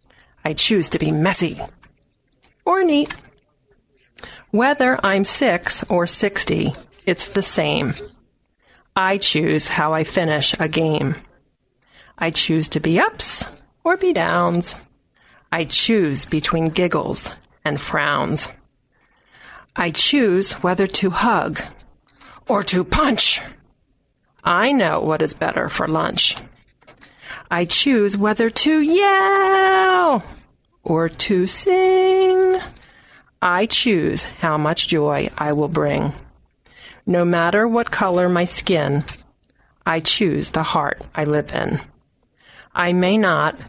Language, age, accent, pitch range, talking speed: English, 40-59, American, 160-215 Hz, 115 wpm